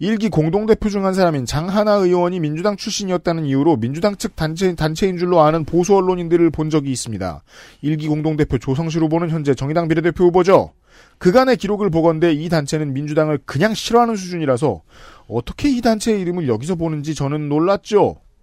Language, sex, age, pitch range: Korean, male, 40-59, 150-195 Hz